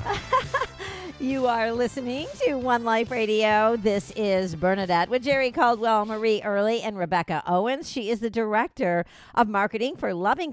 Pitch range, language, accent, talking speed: 175-240 Hz, English, American, 150 wpm